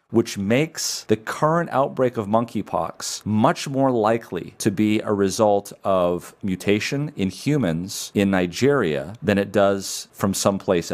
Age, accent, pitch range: 40-59, American, 100-125 Hz